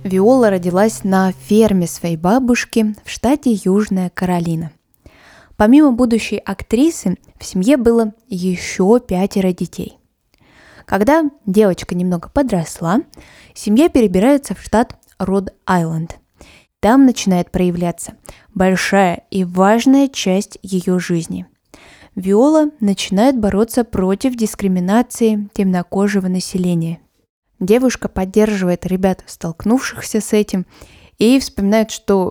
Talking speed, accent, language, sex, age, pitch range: 100 wpm, native, Russian, female, 20-39, 180-230 Hz